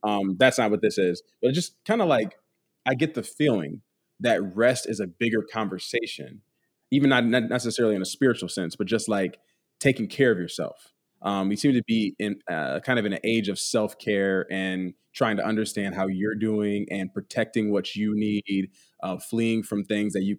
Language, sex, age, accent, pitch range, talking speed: English, male, 20-39, American, 95-115 Hz, 190 wpm